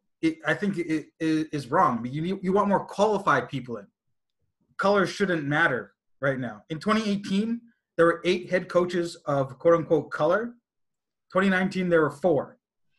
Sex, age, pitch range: male, 20-39, 140-180 Hz